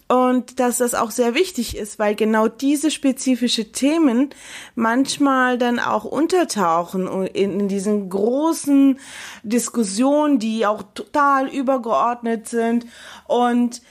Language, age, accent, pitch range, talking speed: German, 30-49, German, 225-280 Hz, 110 wpm